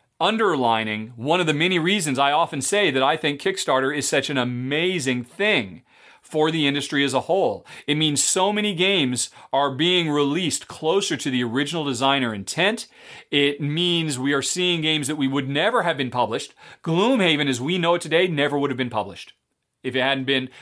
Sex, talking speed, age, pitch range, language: male, 190 wpm, 40-59, 135-180 Hz, English